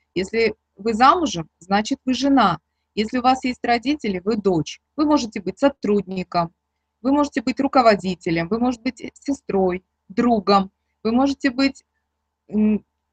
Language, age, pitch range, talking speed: Russian, 30-49, 190-255 Hz, 135 wpm